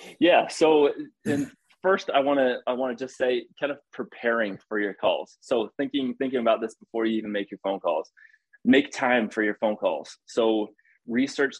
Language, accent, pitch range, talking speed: English, American, 110-130 Hz, 185 wpm